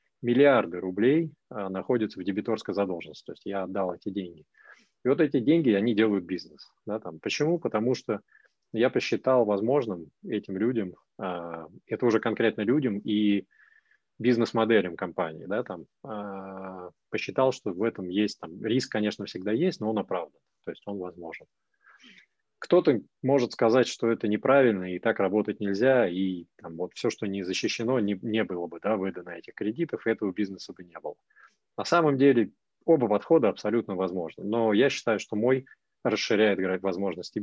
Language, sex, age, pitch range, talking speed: Russian, male, 20-39, 95-120 Hz, 165 wpm